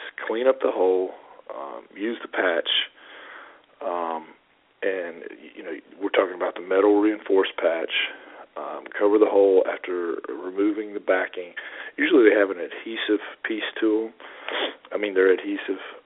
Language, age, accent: English, 40-59, American